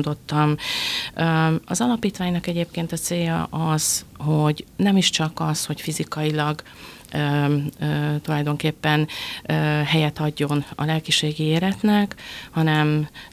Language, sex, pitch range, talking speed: Hungarian, female, 145-160 Hz, 90 wpm